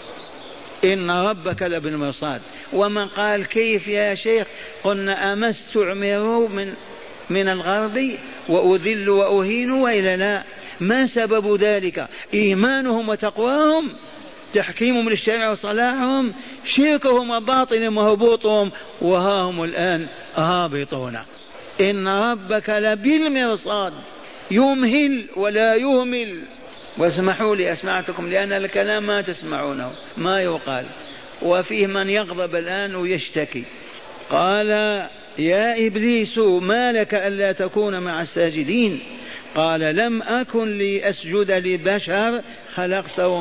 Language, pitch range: Arabic, 185-225 Hz